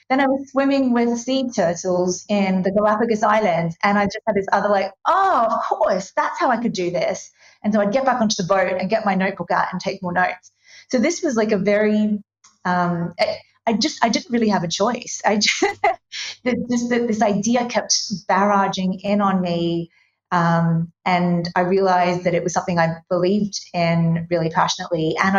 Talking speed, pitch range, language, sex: 200 wpm, 180-215 Hz, English, female